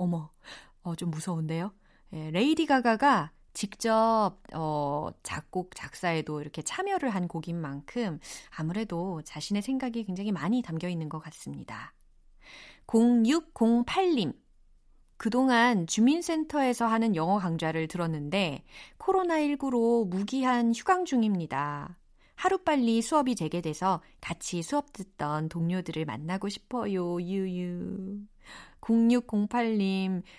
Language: Korean